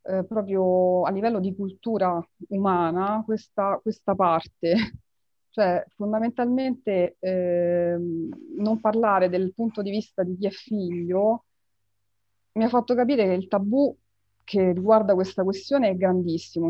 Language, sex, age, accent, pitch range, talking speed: Italian, female, 30-49, native, 175-210 Hz, 130 wpm